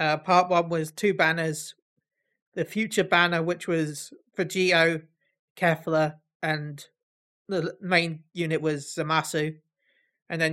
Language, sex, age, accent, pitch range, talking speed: English, male, 30-49, British, 155-180 Hz, 125 wpm